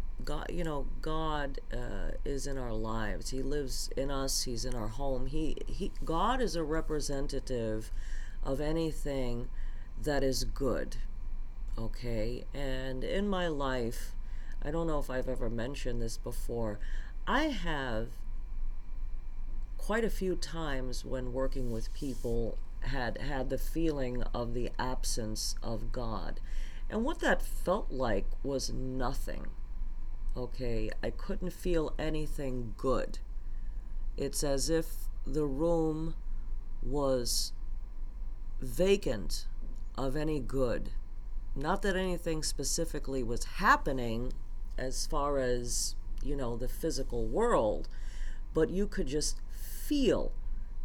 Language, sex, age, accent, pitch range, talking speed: English, female, 50-69, American, 110-150 Hz, 120 wpm